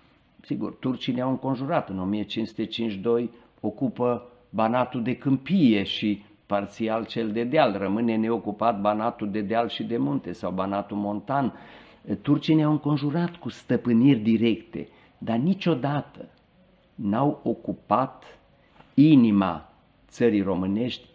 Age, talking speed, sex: 50-69, 110 wpm, male